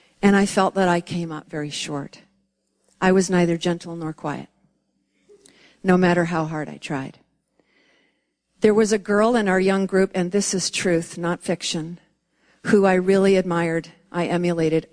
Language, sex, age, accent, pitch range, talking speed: English, female, 50-69, American, 175-200 Hz, 165 wpm